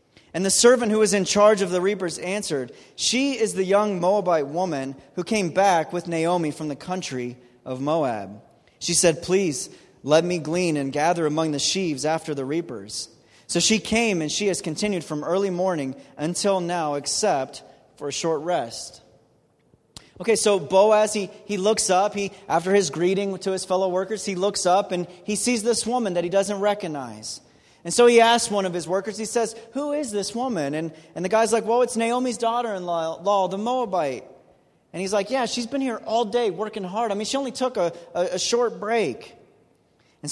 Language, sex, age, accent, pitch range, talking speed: English, male, 30-49, American, 170-215 Hz, 195 wpm